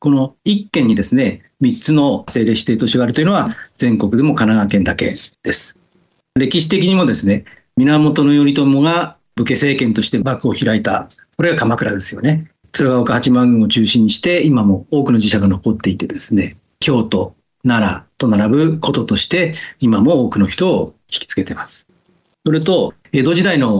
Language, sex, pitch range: Japanese, male, 115-165 Hz